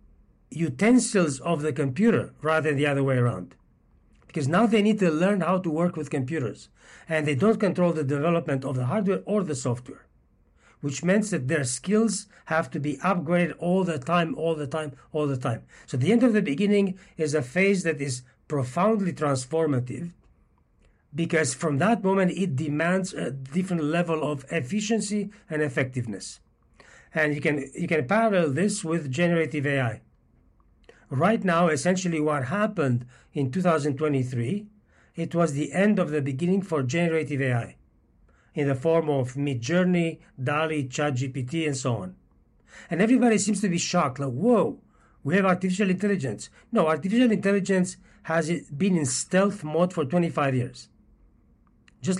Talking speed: 160 wpm